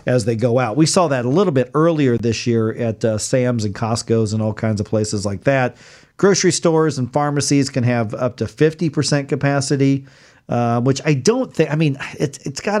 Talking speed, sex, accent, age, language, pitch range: 215 wpm, male, American, 40-59, English, 115-140 Hz